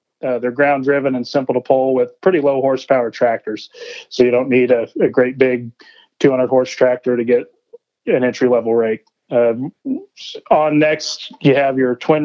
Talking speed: 160 wpm